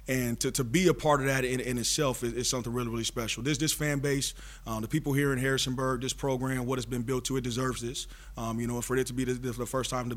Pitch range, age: 115-130 Hz, 30-49